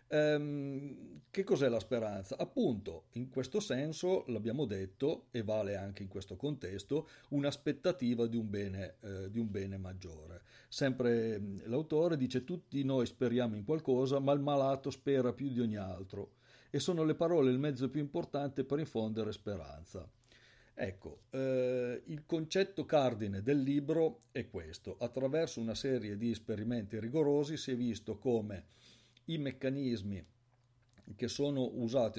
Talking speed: 140 wpm